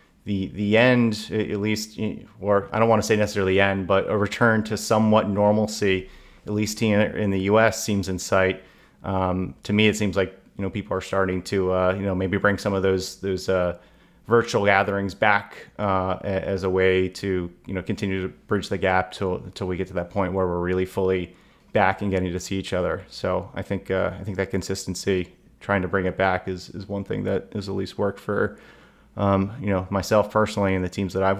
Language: English